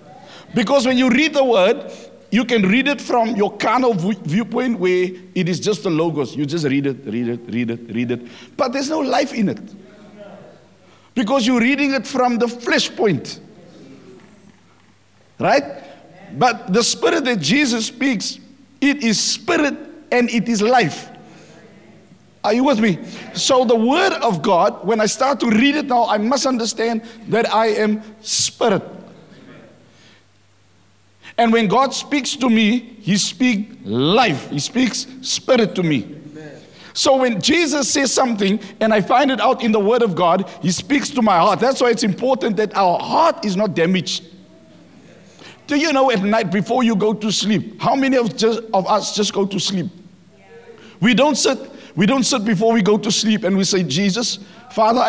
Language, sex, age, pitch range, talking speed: English, male, 60-79, 190-255 Hz, 175 wpm